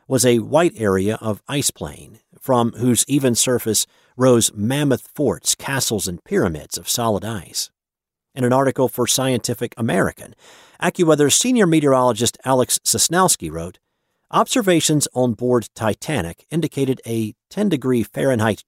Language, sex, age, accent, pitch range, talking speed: English, male, 50-69, American, 105-135 Hz, 130 wpm